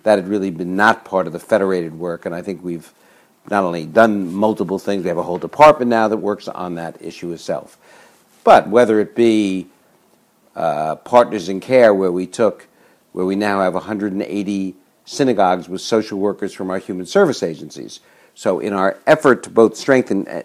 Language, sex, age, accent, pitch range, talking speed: English, male, 60-79, American, 90-115 Hz, 180 wpm